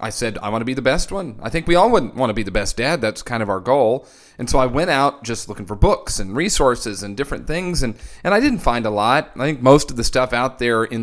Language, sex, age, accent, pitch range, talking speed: English, male, 40-59, American, 115-145 Hz, 300 wpm